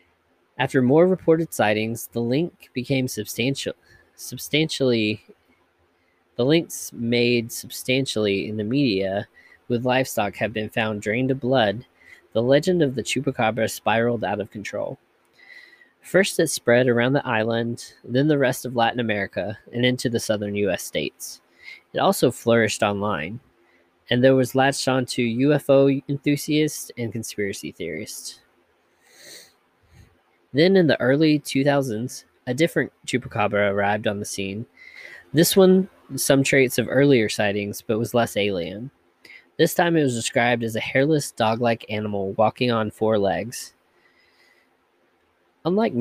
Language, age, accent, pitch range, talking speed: English, 20-39, American, 110-140 Hz, 135 wpm